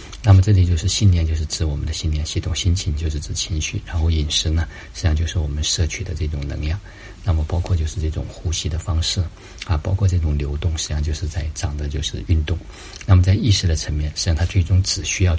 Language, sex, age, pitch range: Chinese, male, 50-69, 80-95 Hz